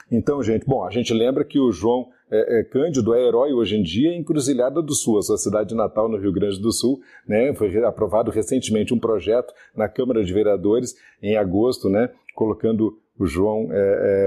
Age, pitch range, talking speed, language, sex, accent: 40-59, 100-125 Hz, 205 wpm, Portuguese, male, Brazilian